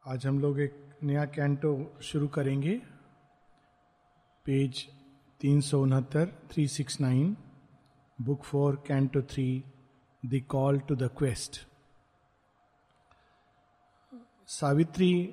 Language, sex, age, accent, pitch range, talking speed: Hindi, male, 50-69, native, 145-190 Hz, 70 wpm